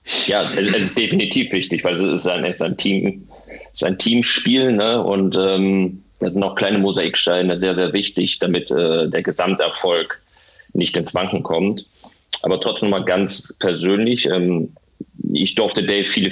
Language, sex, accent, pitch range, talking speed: German, male, German, 90-105 Hz, 170 wpm